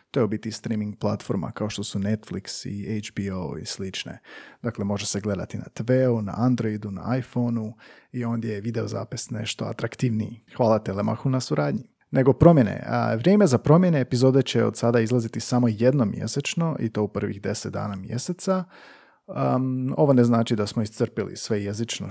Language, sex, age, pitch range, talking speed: Croatian, male, 40-59, 110-130 Hz, 170 wpm